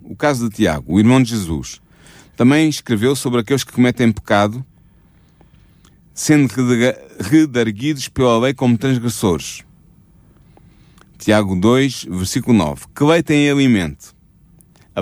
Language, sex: Portuguese, male